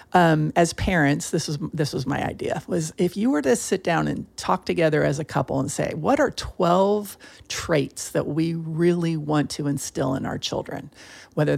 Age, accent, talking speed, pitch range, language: 50-69, American, 190 wpm, 150-200 Hz, English